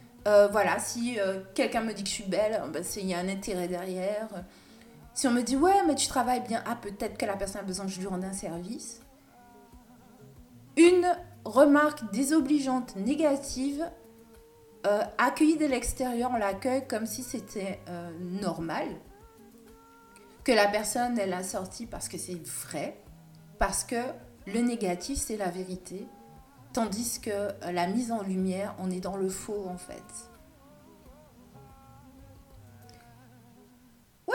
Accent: French